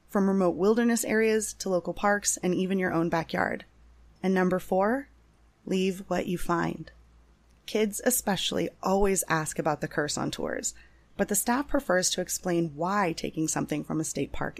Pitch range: 165-200 Hz